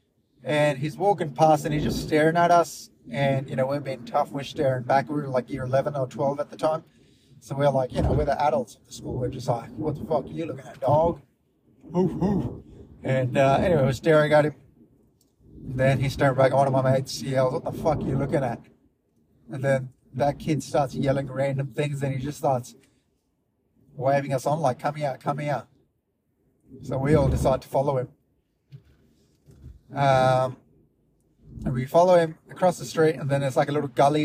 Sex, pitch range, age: male, 130-150 Hz, 20-39